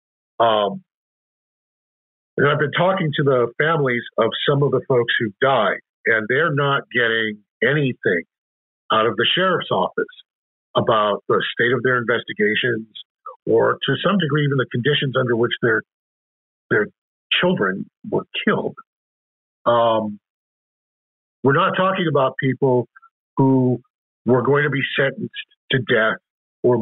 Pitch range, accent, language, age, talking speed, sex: 115-175 Hz, American, English, 50-69, 135 wpm, male